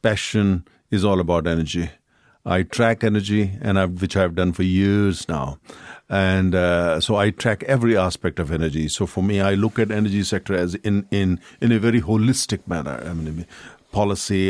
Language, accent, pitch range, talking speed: English, Indian, 90-110 Hz, 180 wpm